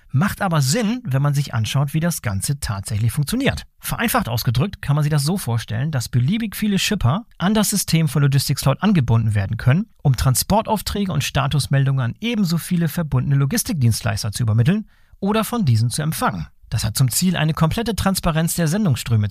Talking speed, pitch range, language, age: 180 wpm, 120-170 Hz, German, 40-59